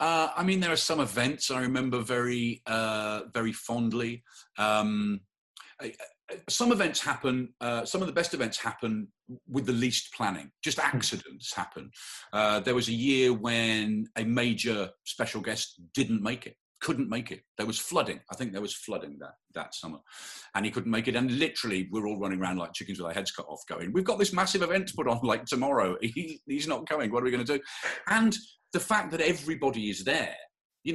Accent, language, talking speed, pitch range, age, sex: British, English, 205 wpm, 105-160 Hz, 40-59, male